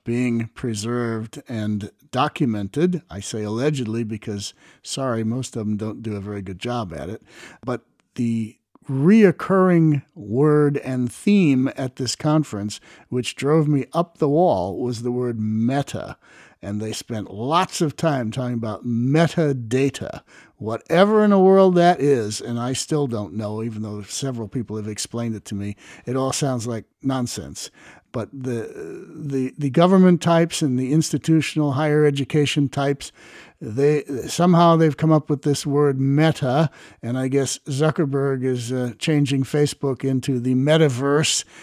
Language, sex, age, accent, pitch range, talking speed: English, male, 60-79, American, 115-150 Hz, 155 wpm